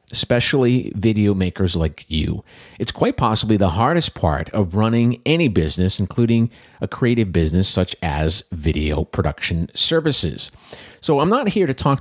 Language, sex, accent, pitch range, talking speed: English, male, American, 90-120 Hz, 150 wpm